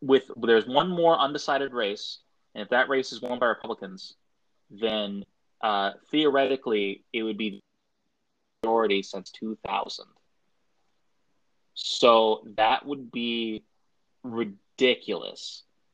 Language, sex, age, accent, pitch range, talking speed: English, male, 20-39, American, 110-155 Hz, 105 wpm